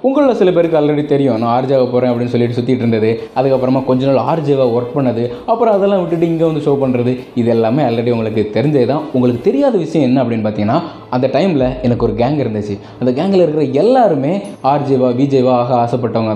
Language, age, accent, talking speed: Tamil, 20-39, native, 185 wpm